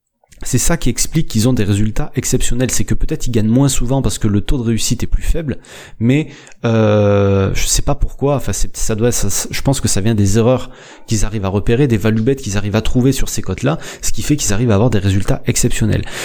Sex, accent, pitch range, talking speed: male, French, 110-140 Hz, 250 wpm